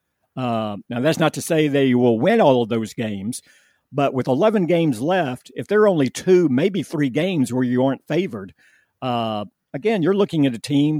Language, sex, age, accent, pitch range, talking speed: English, male, 50-69, American, 120-145 Hz, 200 wpm